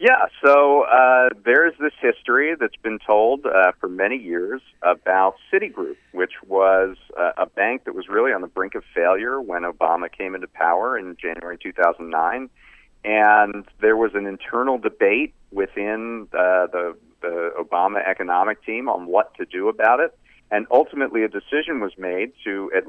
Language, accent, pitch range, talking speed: English, American, 100-165 Hz, 165 wpm